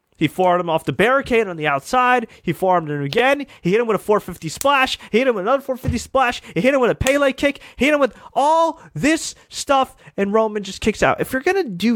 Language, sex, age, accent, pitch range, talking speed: English, male, 30-49, American, 150-230 Hz, 255 wpm